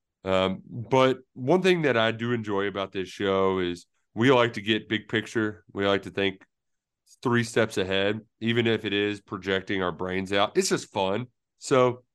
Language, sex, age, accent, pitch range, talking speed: English, male, 30-49, American, 95-125 Hz, 185 wpm